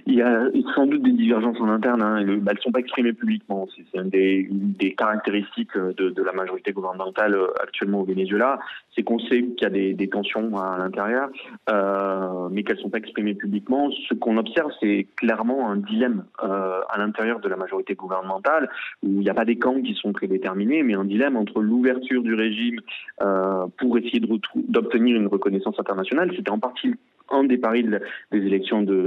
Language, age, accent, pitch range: French, 20-39, French, 100-120 Hz